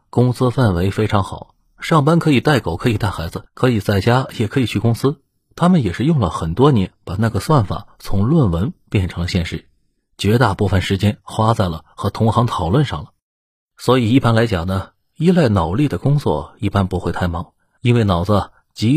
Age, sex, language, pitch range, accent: 30-49, male, Chinese, 90-120 Hz, native